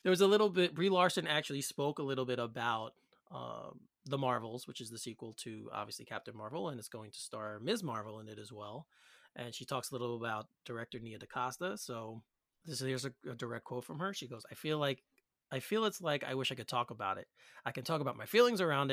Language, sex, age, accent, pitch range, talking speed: English, male, 30-49, American, 120-150 Hz, 240 wpm